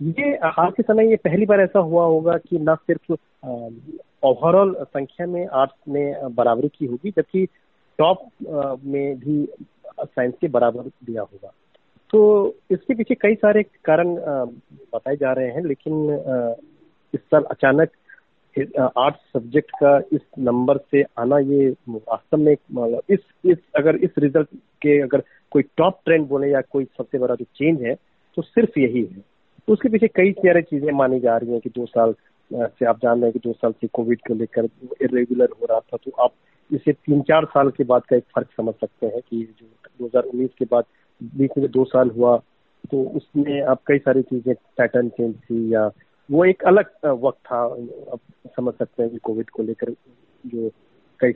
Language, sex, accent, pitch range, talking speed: Hindi, male, native, 120-165 Hz, 180 wpm